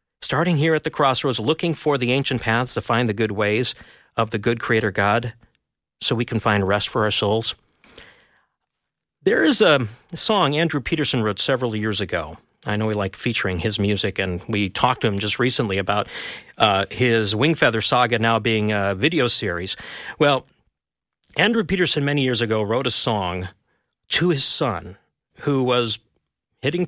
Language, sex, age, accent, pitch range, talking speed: English, male, 50-69, American, 105-145 Hz, 170 wpm